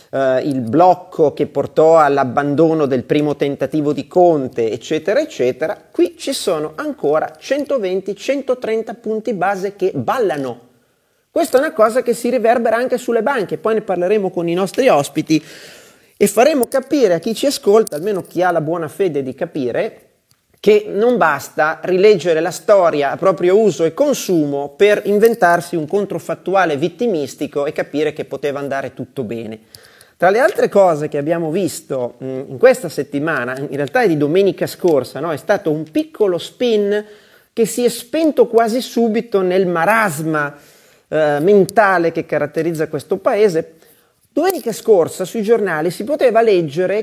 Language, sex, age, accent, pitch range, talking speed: Italian, male, 30-49, native, 155-230 Hz, 150 wpm